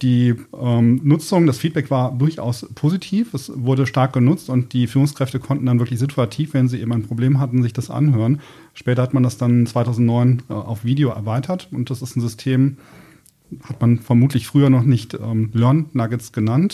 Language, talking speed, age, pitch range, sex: German, 190 wpm, 30-49, 120-145 Hz, male